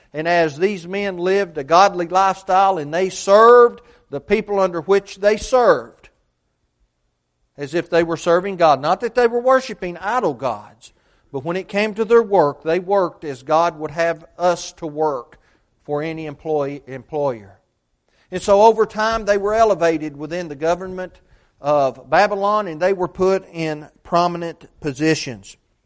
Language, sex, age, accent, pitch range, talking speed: English, male, 40-59, American, 155-215 Hz, 160 wpm